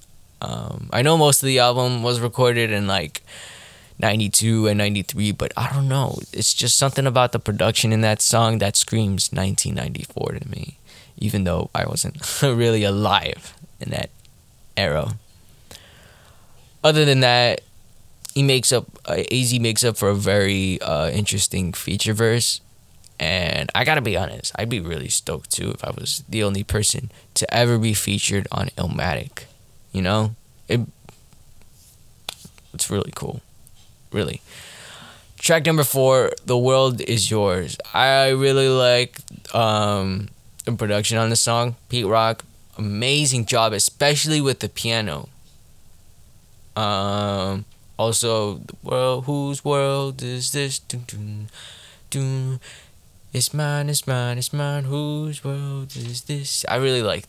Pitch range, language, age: 105-130 Hz, English, 10-29